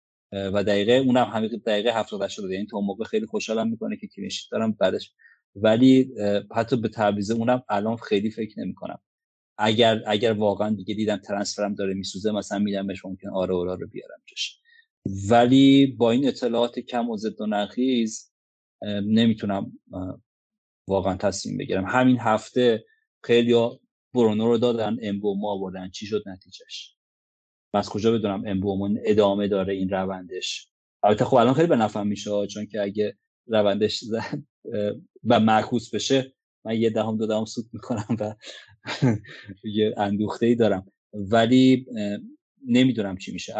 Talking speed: 140 wpm